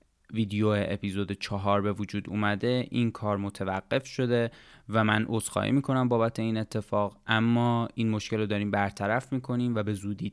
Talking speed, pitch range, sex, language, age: 155 wpm, 100-110 Hz, male, Persian, 20-39